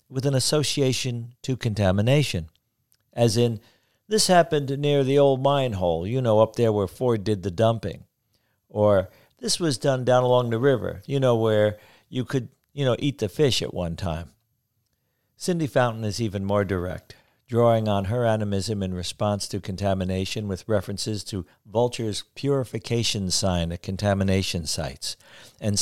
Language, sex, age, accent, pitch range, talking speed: English, male, 50-69, American, 100-125 Hz, 160 wpm